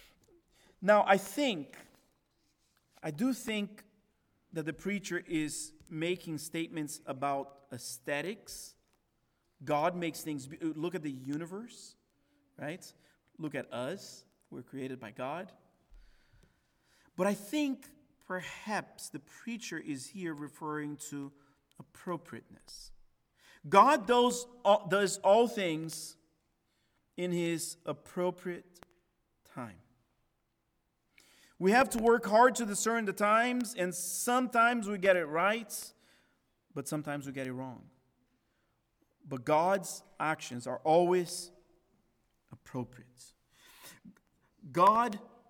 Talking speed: 105 wpm